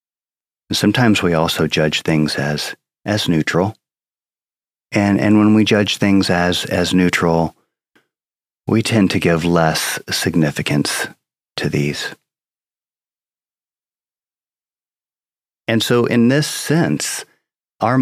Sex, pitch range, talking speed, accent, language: male, 80-100 Hz, 105 wpm, American, English